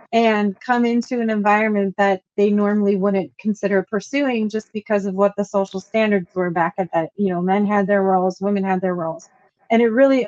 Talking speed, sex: 205 wpm, female